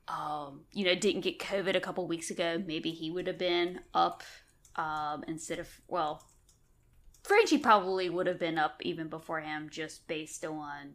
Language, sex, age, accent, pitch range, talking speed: English, female, 10-29, American, 165-205 Hz, 175 wpm